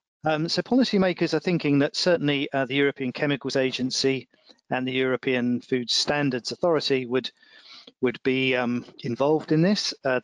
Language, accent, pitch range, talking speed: English, British, 120-140 Hz, 150 wpm